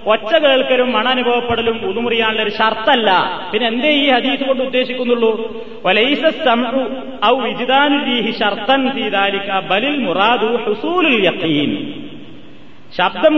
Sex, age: male, 30-49